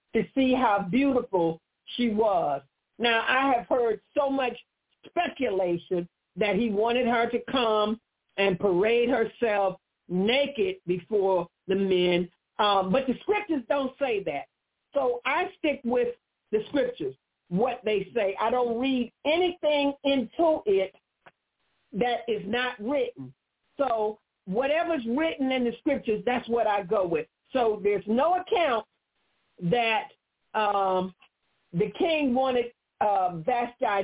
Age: 50-69